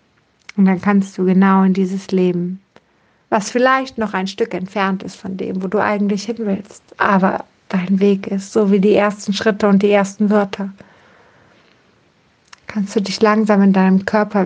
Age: 60-79